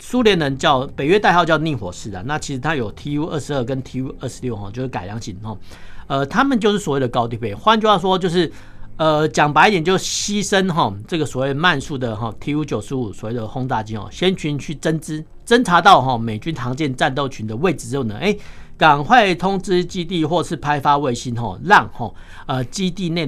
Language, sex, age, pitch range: Chinese, male, 50-69, 115-160 Hz